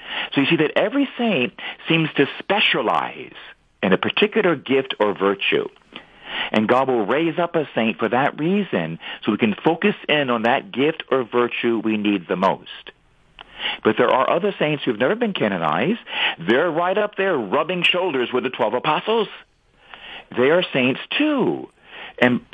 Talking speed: 170 wpm